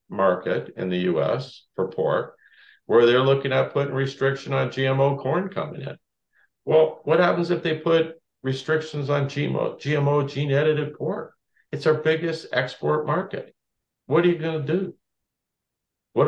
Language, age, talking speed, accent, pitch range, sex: English, 50-69, 150 wpm, American, 140-165 Hz, male